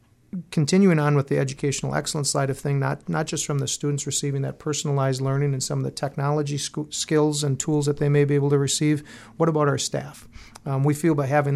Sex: male